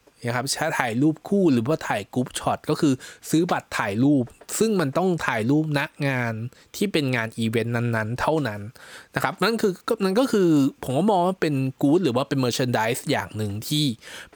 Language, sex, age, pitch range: Thai, male, 20-39, 120-160 Hz